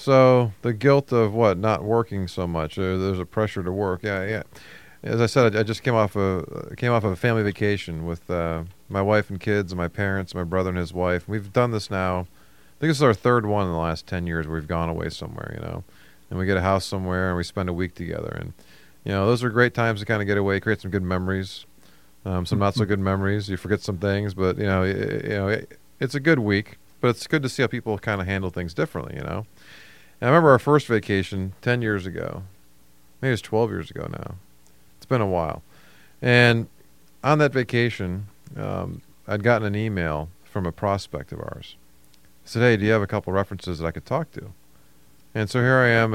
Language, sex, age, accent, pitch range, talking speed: English, male, 30-49, American, 90-115 Hz, 240 wpm